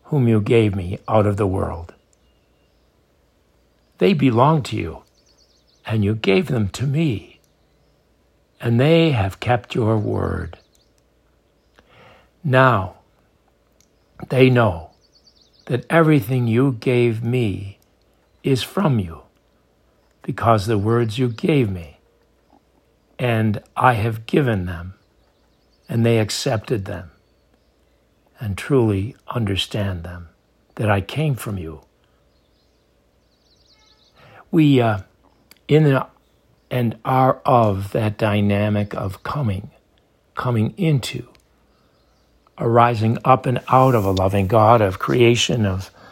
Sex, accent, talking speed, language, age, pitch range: male, American, 105 wpm, English, 60-79, 95-125 Hz